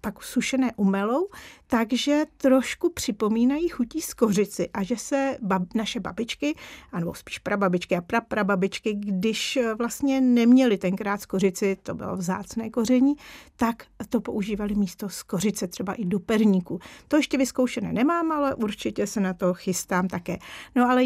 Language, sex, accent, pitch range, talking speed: Czech, female, native, 195-245 Hz, 150 wpm